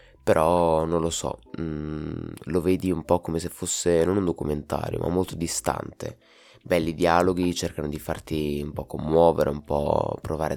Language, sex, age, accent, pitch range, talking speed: Italian, male, 20-39, native, 75-85 Hz, 165 wpm